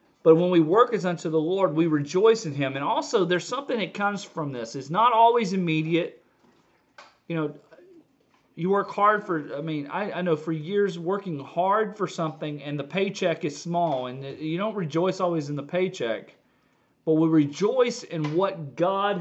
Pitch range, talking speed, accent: 150-195 Hz, 185 wpm, American